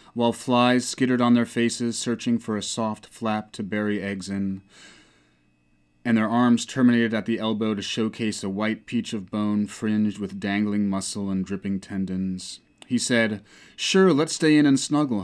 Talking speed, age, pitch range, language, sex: 175 wpm, 30-49, 100-125 Hz, English, male